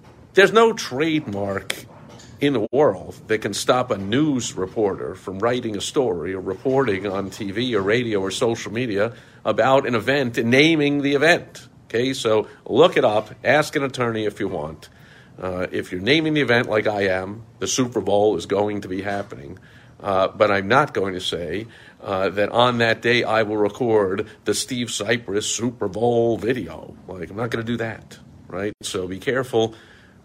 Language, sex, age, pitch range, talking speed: English, male, 50-69, 105-130 Hz, 190 wpm